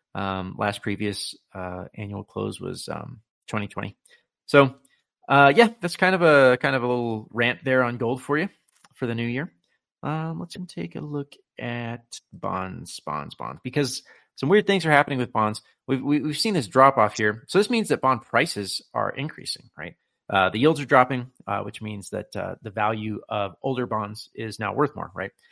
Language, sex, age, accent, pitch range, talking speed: English, male, 30-49, American, 110-150 Hz, 195 wpm